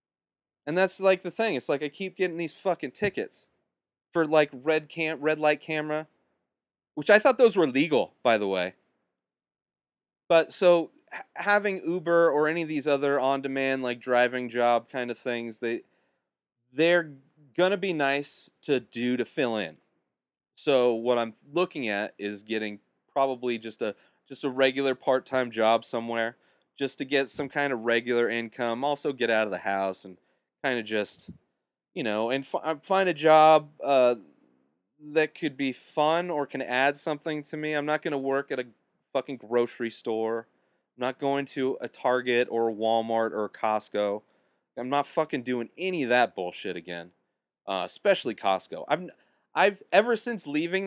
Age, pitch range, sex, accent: 30-49, 120-160 Hz, male, American